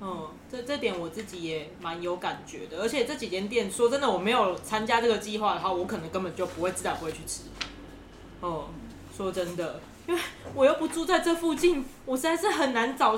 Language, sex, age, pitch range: Chinese, female, 20-39, 180-240 Hz